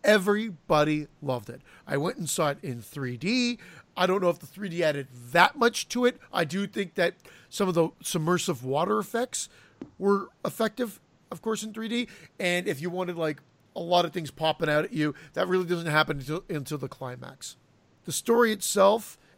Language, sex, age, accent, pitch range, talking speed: English, male, 40-59, American, 155-220 Hz, 190 wpm